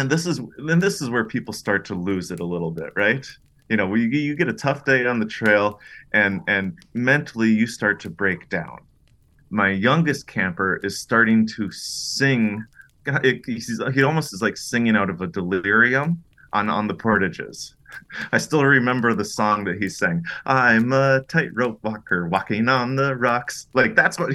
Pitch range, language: 100-135 Hz, English